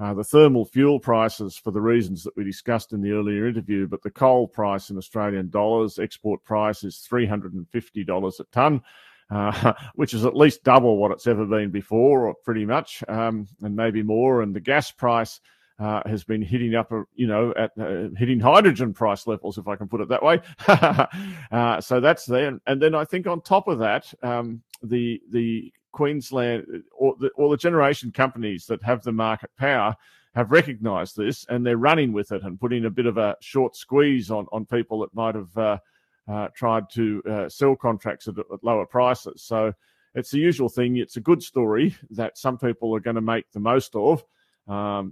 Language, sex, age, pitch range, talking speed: English, male, 40-59, 105-125 Hz, 205 wpm